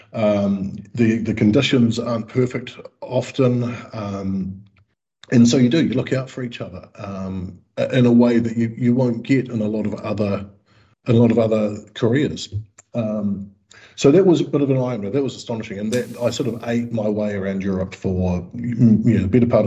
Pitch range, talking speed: 100-120 Hz, 200 wpm